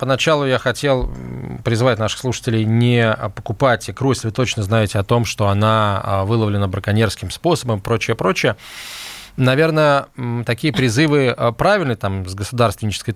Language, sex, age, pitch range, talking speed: Russian, male, 20-39, 105-135 Hz, 130 wpm